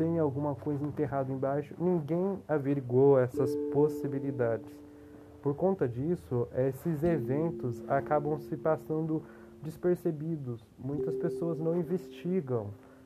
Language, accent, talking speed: Portuguese, Brazilian, 100 wpm